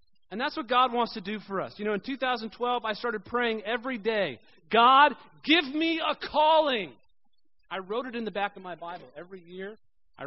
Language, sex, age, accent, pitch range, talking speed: English, male, 40-59, American, 190-260 Hz, 205 wpm